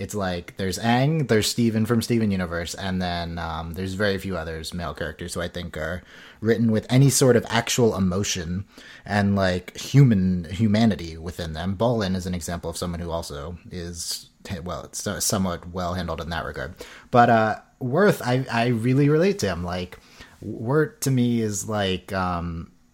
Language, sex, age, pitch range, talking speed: English, male, 30-49, 90-105 Hz, 180 wpm